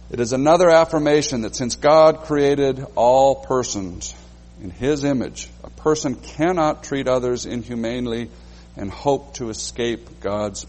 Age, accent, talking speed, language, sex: 60-79, American, 135 wpm, English, male